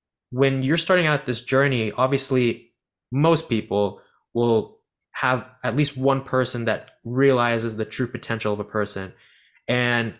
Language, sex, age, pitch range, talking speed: English, male, 20-39, 110-135 Hz, 140 wpm